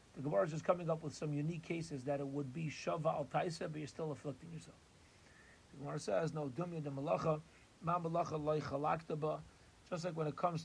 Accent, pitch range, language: American, 145-165 Hz, English